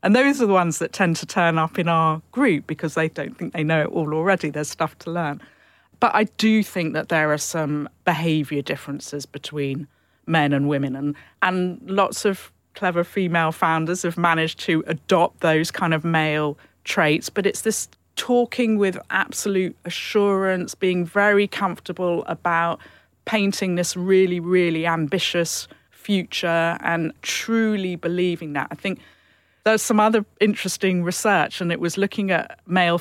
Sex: female